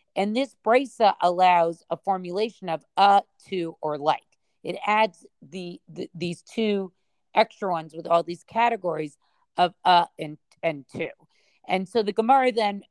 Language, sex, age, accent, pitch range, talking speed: English, female, 40-59, American, 165-210 Hz, 155 wpm